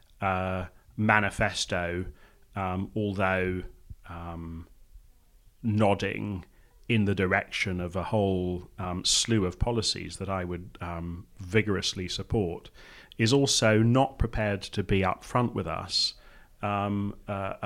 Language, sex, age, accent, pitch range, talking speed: English, male, 30-49, British, 95-110 Hz, 115 wpm